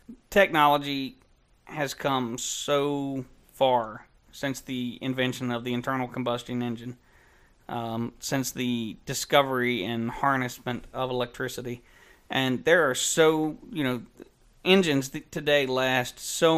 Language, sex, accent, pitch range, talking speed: English, male, American, 125-145 Hz, 110 wpm